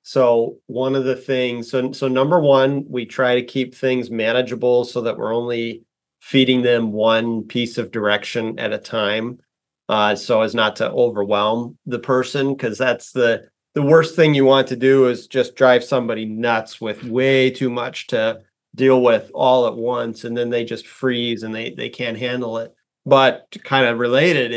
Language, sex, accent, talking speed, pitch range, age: English, male, American, 185 wpm, 115-130 Hz, 30-49